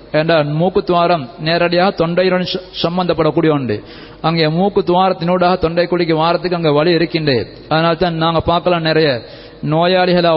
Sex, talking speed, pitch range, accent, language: male, 120 wpm, 160-185 Hz, native, Tamil